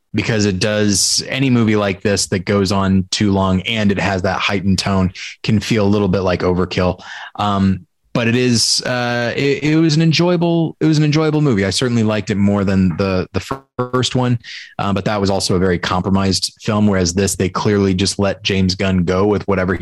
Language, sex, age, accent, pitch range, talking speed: English, male, 20-39, American, 100-120 Hz, 210 wpm